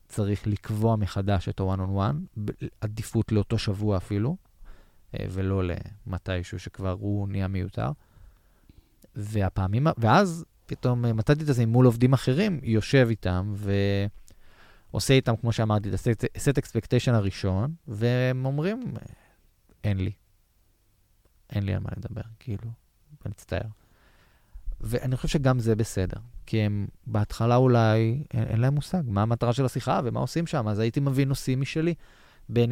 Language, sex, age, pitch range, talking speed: Hebrew, male, 20-39, 100-125 Hz, 135 wpm